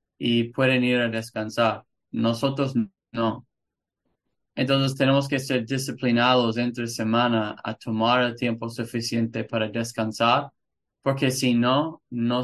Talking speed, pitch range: 120 wpm, 115-130 Hz